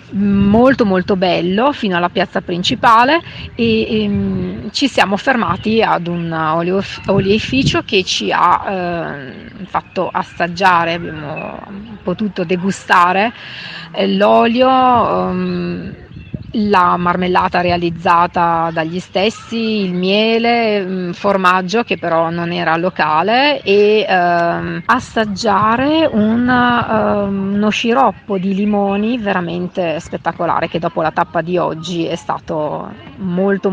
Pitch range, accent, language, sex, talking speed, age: 175-215 Hz, native, Italian, female, 105 wpm, 30-49